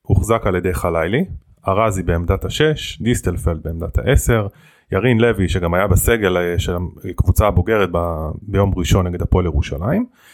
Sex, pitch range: male, 90-120 Hz